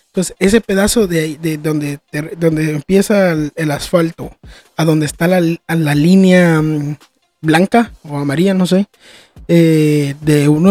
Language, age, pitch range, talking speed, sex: Spanish, 20-39, 165-200 Hz, 155 wpm, male